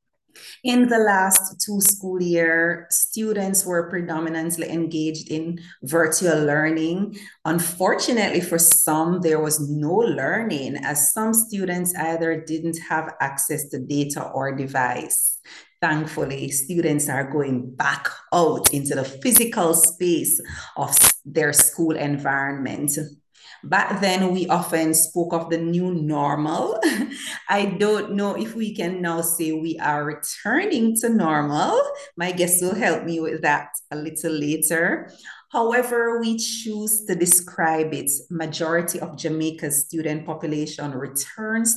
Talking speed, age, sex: 130 wpm, 30-49, female